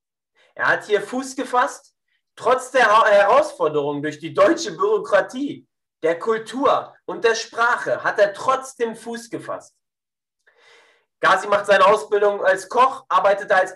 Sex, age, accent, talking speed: male, 30-49, German, 130 wpm